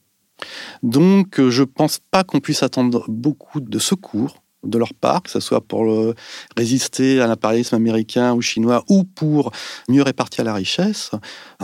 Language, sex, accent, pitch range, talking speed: French, male, French, 115-160 Hz, 165 wpm